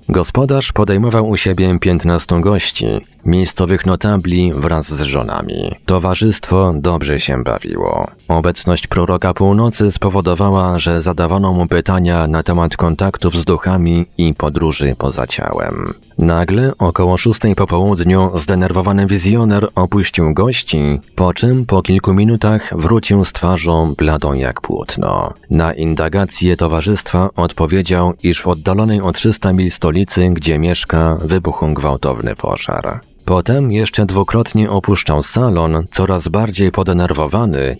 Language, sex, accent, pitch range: Polish, male, native, 85-100 Hz